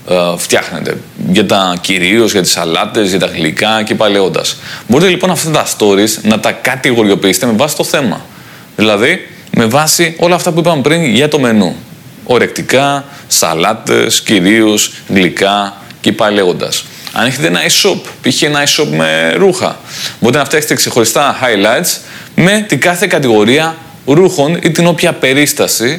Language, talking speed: Greek, 150 wpm